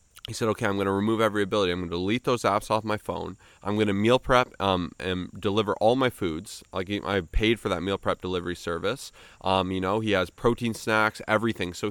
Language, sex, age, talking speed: English, male, 20-39, 235 wpm